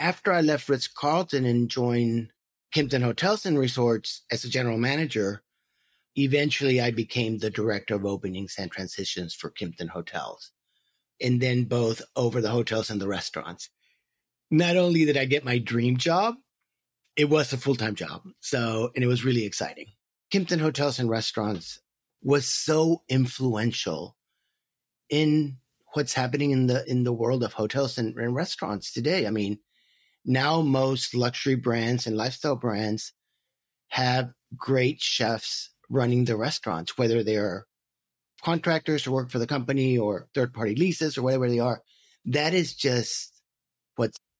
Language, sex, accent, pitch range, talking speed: English, male, American, 115-145 Hz, 150 wpm